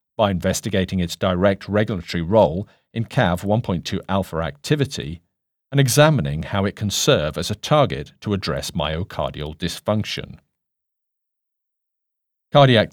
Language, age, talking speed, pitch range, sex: English, 50-69, 110 wpm, 85-115 Hz, male